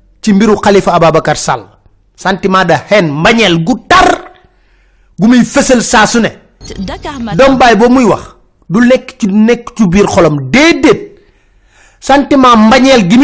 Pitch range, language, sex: 160-250 Hz, French, male